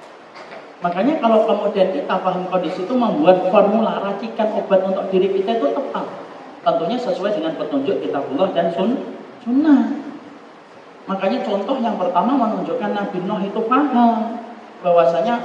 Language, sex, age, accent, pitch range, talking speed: Indonesian, male, 40-59, native, 170-225 Hz, 135 wpm